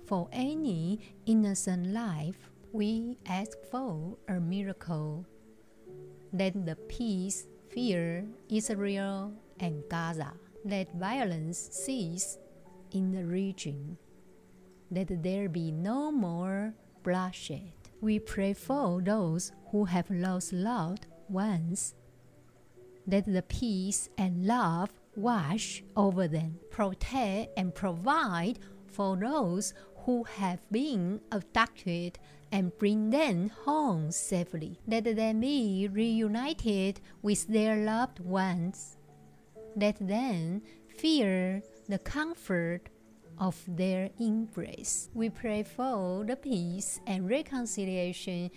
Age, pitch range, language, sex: 50-69, 175-220 Hz, Chinese, female